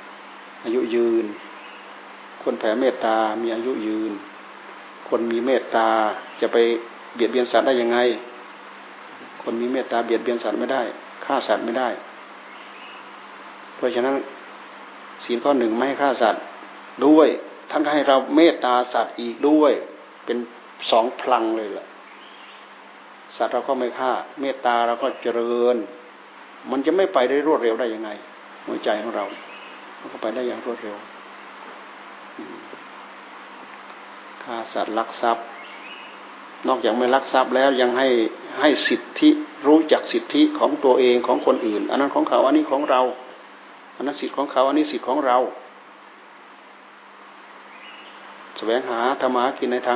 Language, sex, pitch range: Thai, male, 120-145 Hz